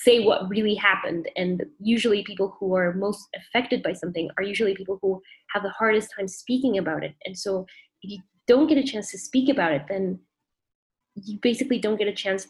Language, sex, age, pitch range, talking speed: English, female, 20-39, 185-225 Hz, 205 wpm